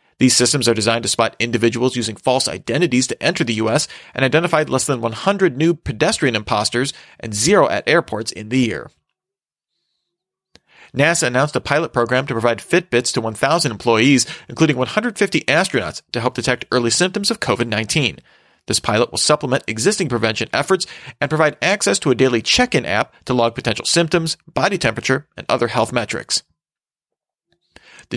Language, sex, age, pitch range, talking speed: English, male, 40-59, 120-165 Hz, 160 wpm